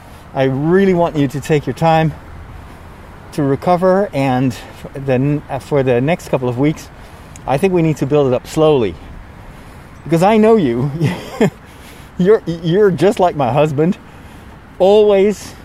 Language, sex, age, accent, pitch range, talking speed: English, male, 30-49, American, 115-175 Hz, 150 wpm